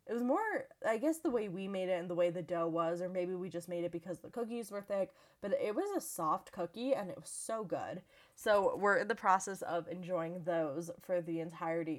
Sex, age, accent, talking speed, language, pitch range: female, 20-39, American, 245 wpm, English, 175-210 Hz